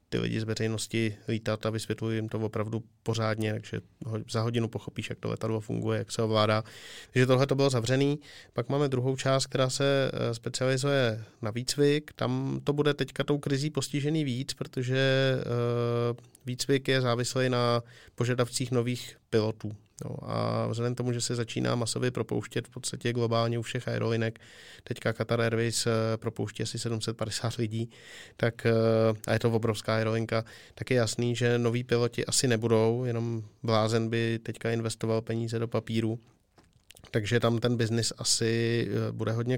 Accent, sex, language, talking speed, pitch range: native, male, Czech, 155 wpm, 110-130 Hz